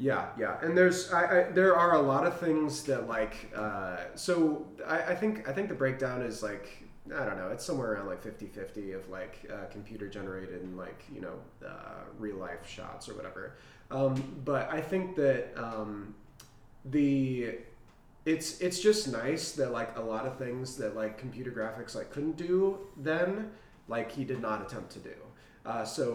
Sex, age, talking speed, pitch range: male, 20-39, 190 wpm, 110-160 Hz